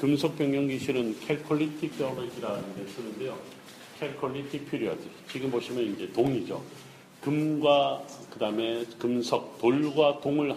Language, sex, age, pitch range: Korean, male, 40-59, 115-145 Hz